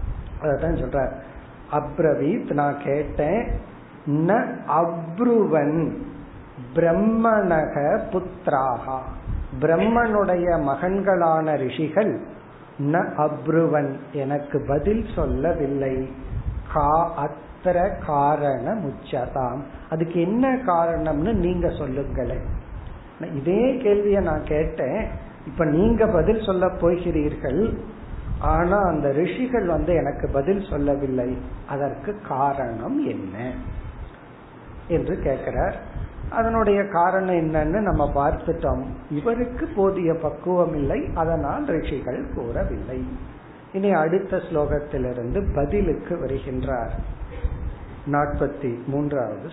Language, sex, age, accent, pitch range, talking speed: Tamil, male, 50-69, native, 140-180 Hz, 50 wpm